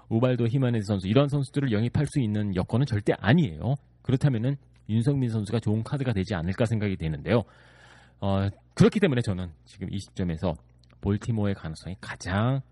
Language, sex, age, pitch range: Korean, male, 30-49, 90-135 Hz